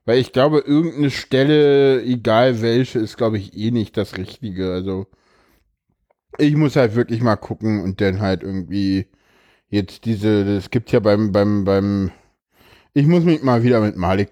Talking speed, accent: 170 wpm, German